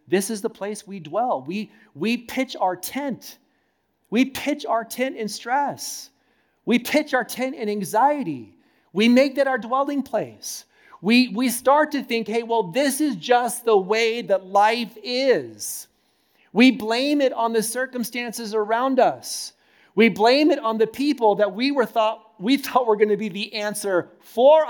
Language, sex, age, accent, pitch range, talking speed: English, male, 40-59, American, 205-255 Hz, 170 wpm